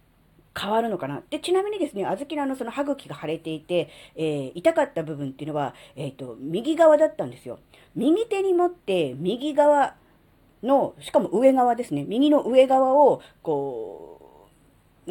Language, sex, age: Japanese, female, 40-59